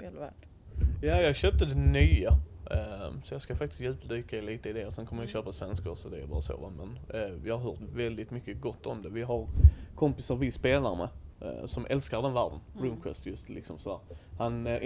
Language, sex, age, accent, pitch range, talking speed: Swedish, male, 30-49, native, 95-135 Hz, 200 wpm